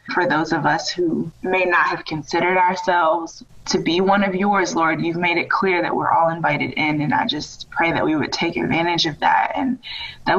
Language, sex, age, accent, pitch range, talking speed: English, female, 20-39, American, 160-185 Hz, 220 wpm